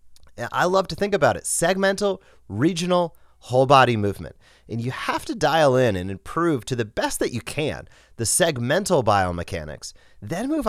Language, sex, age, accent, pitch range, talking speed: English, male, 30-49, American, 100-160 Hz, 170 wpm